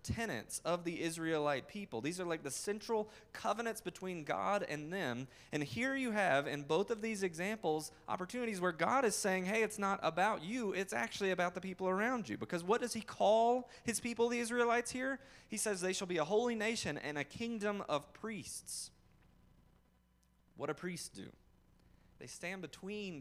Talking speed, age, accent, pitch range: 185 wpm, 30-49, American, 135-185 Hz